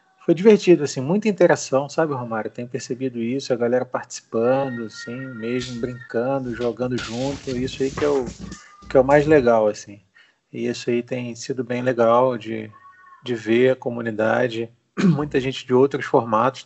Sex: male